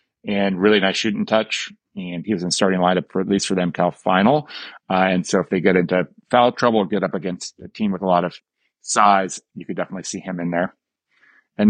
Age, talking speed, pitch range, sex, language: 30-49, 235 wpm, 90-105 Hz, male, English